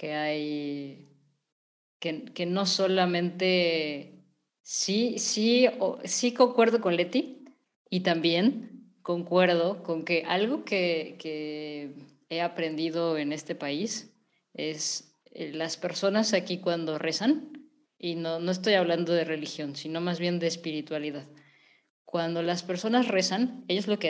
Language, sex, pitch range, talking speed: Spanish, female, 160-195 Hz, 130 wpm